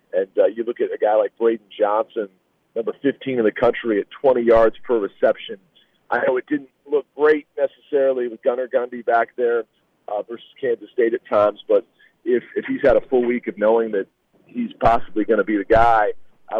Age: 40-59